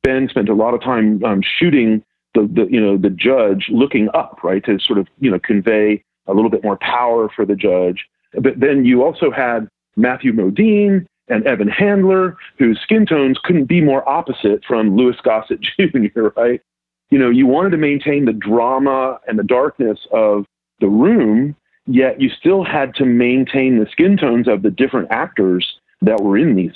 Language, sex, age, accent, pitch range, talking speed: English, male, 40-59, American, 110-145 Hz, 190 wpm